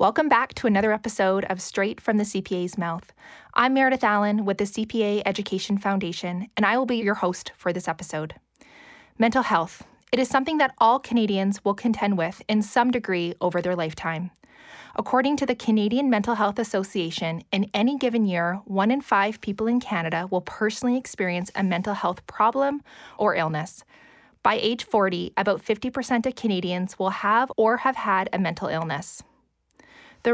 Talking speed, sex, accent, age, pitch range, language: 170 wpm, female, American, 20-39, 185-235 Hz, English